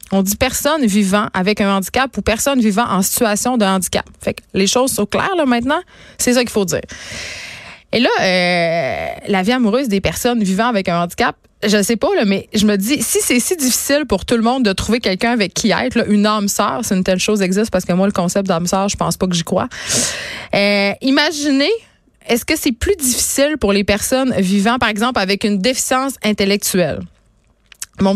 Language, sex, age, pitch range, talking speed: French, female, 20-39, 195-245 Hz, 215 wpm